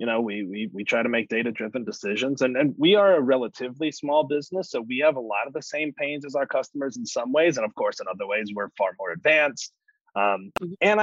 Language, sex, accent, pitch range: English, male, American, 115-175 Hz